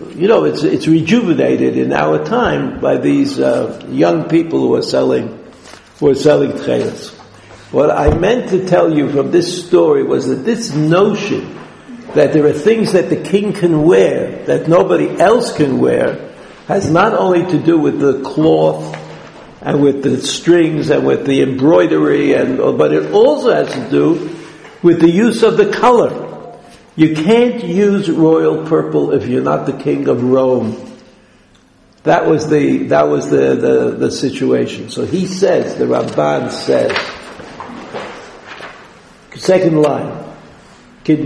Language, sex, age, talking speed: English, male, 70-89, 155 wpm